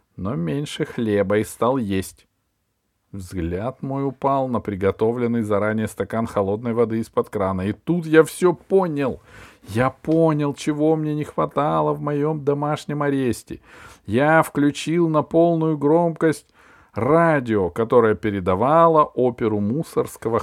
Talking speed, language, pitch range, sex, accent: 125 wpm, Russian, 100-145 Hz, male, native